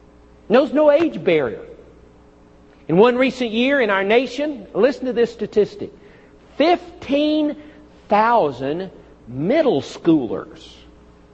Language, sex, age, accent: English, male, 50-69, American